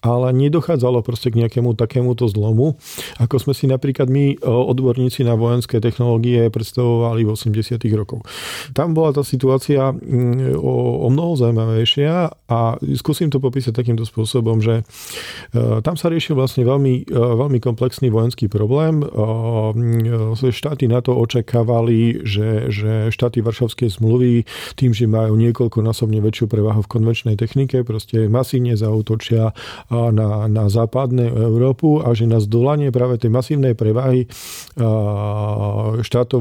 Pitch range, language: 110-125 Hz, Slovak